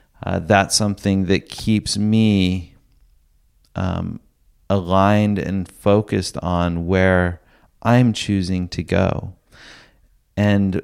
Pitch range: 85-105 Hz